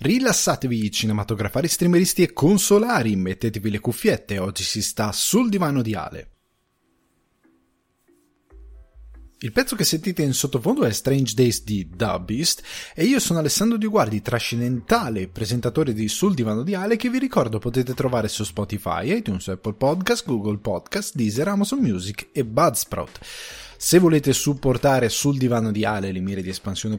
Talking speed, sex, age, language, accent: 150 wpm, male, 20-39, Italian, native